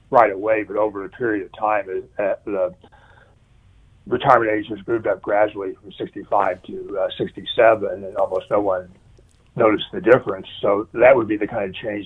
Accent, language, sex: American, English, male